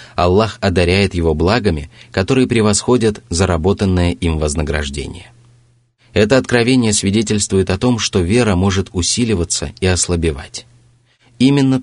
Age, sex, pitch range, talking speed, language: 30-49, male, 85-120 Hz, 105 wpm, Russian